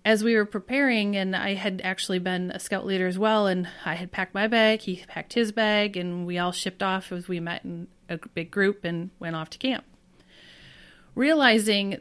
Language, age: English, 30-49